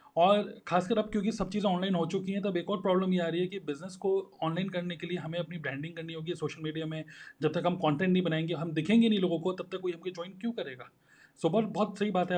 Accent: native